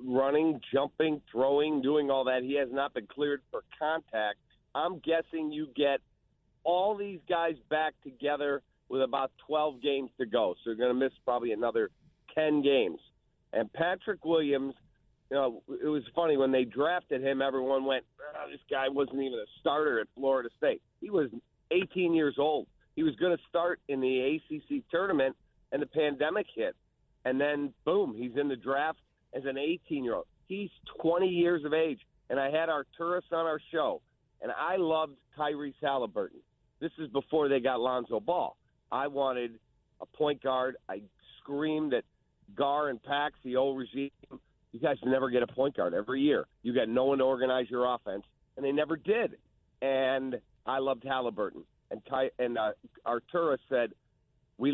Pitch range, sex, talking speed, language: 130-155 Hz, male, 175 wpm, English